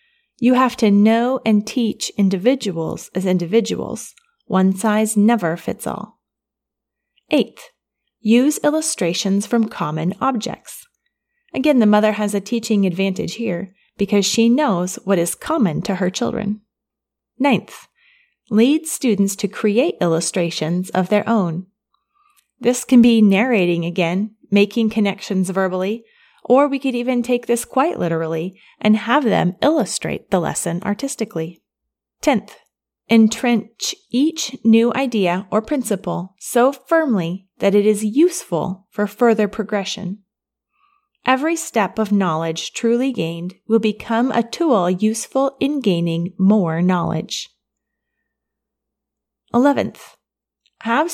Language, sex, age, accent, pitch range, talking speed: English, female, 30-49, American, 190-255 Hz, 120 wpm